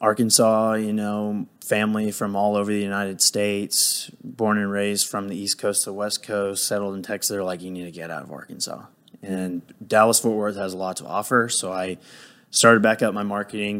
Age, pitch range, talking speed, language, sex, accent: 20-39, 95-110 Hz, 210 wpm, English, male, American